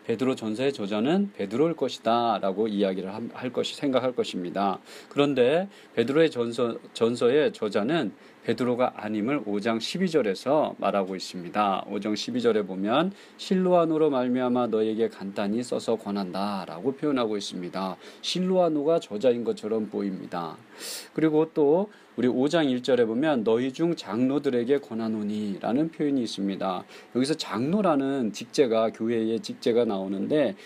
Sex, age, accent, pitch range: male, 40-59, native, 105-160 Hz